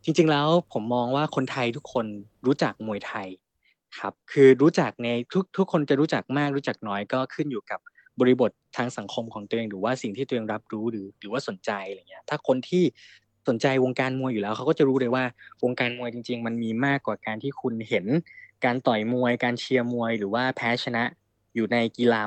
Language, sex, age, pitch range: Thai, male, 20-39, 110-140 Hz